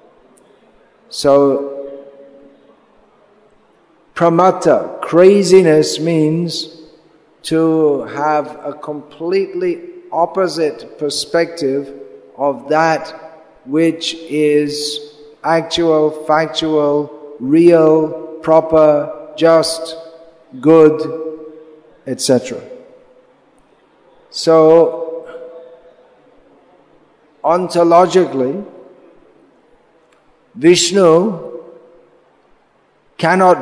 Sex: male